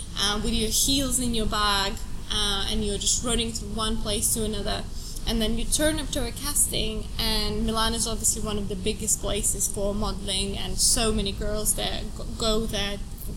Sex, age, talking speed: female, 20-39, 195 wpm